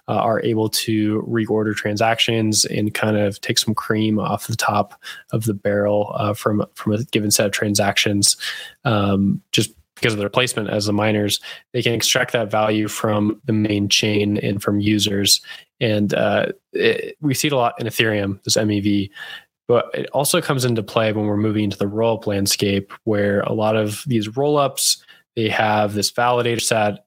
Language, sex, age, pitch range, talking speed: English, male, 20-39, 105-115 Hz, 180 wpm